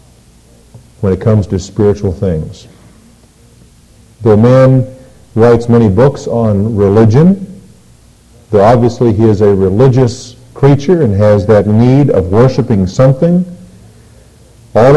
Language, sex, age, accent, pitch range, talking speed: English, male, 50-69, American, 95-130 Hz, 110 wpm